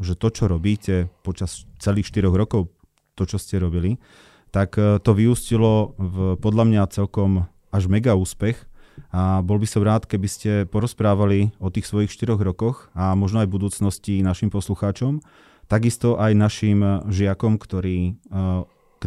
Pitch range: 95-115 Hz